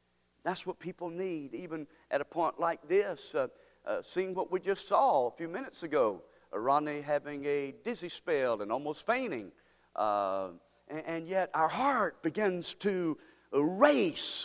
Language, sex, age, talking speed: English, male, 50-69, 160 wpm